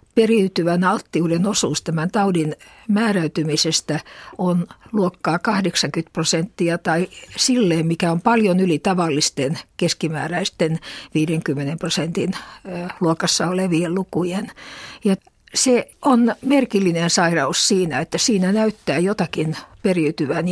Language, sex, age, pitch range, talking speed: Finnish, female, 60-79, 160-195 Hz, 100 wpm